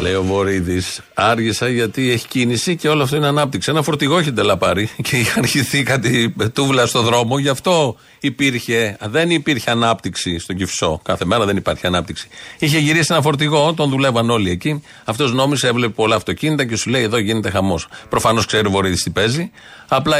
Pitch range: 95-125 Hz